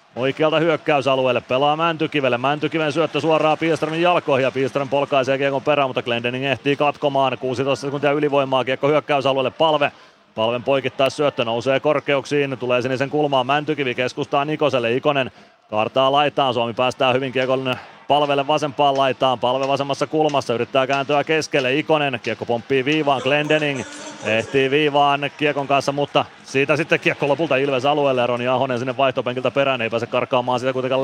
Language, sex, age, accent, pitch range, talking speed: Finnish, male, 30-49, native, 125-145 Hz, 145 wpm